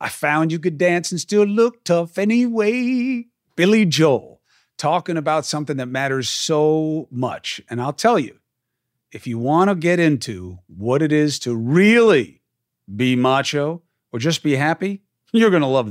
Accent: American